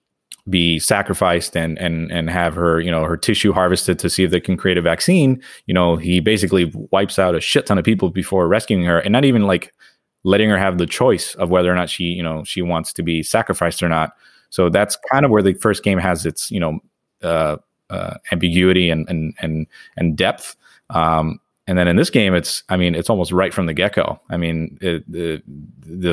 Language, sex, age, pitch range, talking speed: English, male, 20-39, 85-95 Hz, 225 wpm